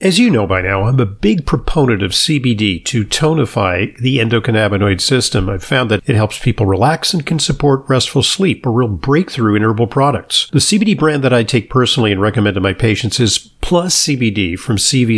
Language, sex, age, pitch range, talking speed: English, male, 50-69, 110-155 Hz, 200 wpm